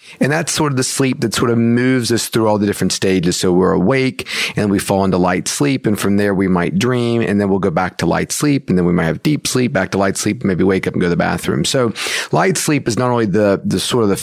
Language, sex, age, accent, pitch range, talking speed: English, male, 40-59, American, 95-120 Hz, 290 wpm